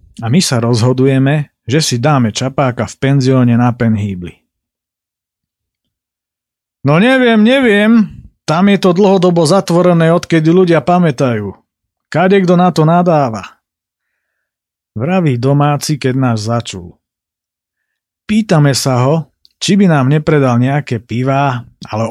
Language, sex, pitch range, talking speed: Slovak, male, 120-165 Hz, 115 wpm